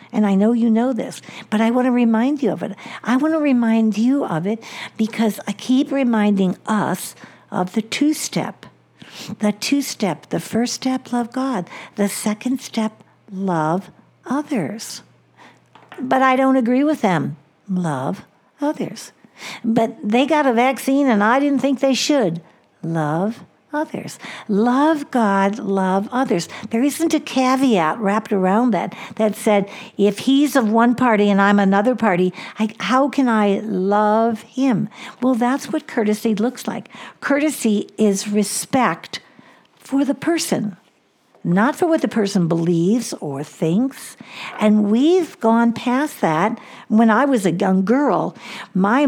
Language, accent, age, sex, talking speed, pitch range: English, American, 60-79, female, 150 wpm, 195-255 Hz